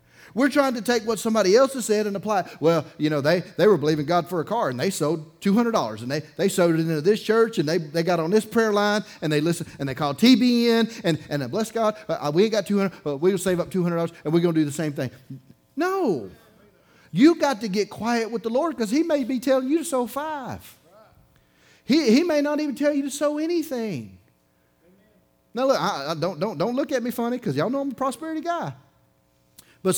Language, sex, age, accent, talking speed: English, male, 30-49, American, 240 wpm